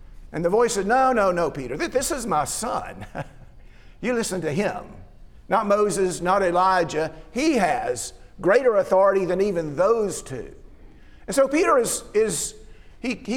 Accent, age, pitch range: American, 50-69, 190-250 Hz